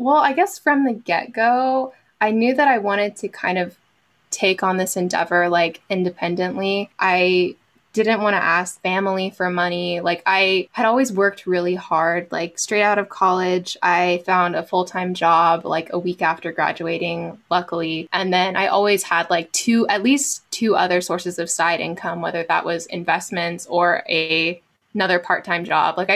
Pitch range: 175-205 Hz